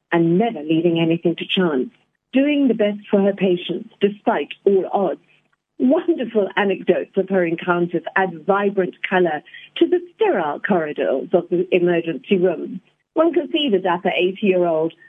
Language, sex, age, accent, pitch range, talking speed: English, female, 50-69, British, 180-285 Hz, 145 wpm